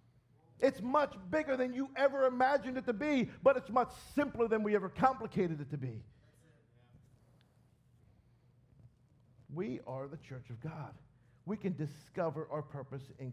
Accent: American